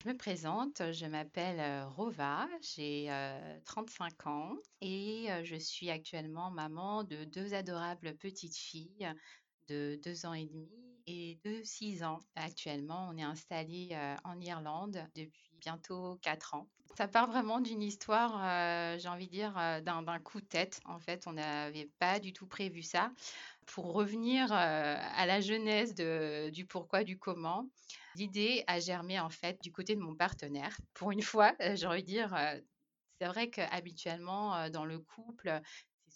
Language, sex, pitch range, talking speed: French, female, 160-210 Hz, 160 wpm